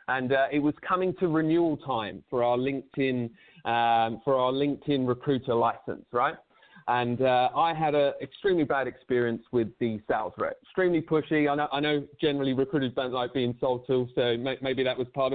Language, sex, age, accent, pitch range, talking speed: English, male, 30-49, British, 125-150 Hz, 190 wpm